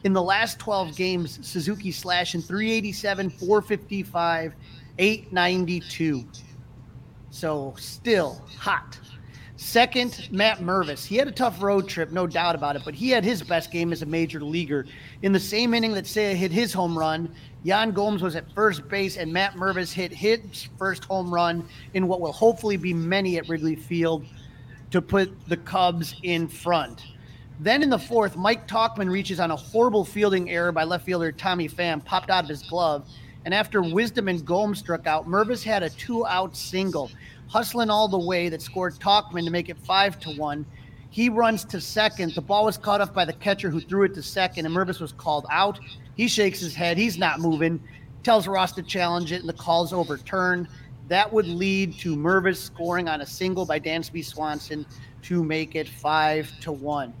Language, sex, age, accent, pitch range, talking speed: English, male, 30-49, American, 155-195 Hz, 190 wpm